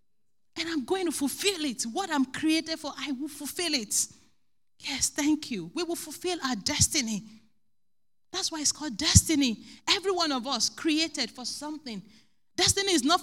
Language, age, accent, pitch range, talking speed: English, 40-59, Nigerian, 220-320 Hz, 170 wpm